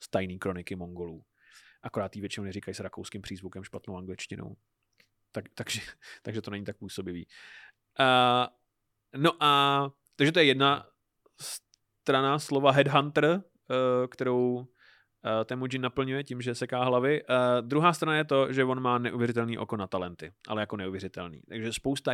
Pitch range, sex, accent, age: 105-130 Hz, male, native, 30-49